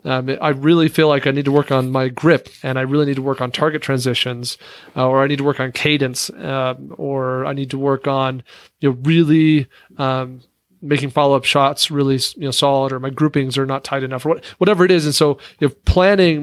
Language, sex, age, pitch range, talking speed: English, male, 40-59, 135-155 Hz, 235 wpm